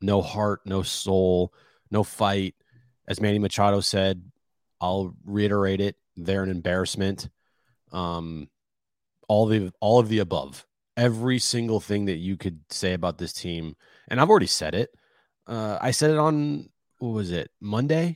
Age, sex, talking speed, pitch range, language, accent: 30-49, male, 155 wpm, 95-125 Hz, English, American